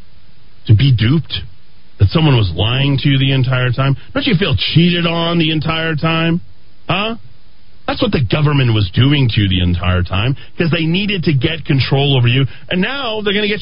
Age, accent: 40-59, American